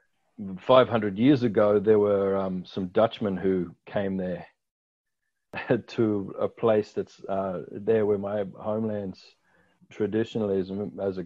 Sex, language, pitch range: male, English, 105-120 Hz